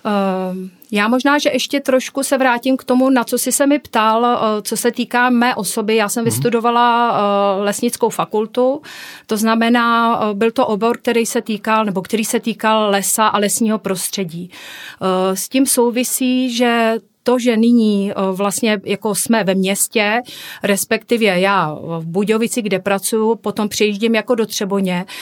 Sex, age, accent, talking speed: female, 40-59, native, 150 wpm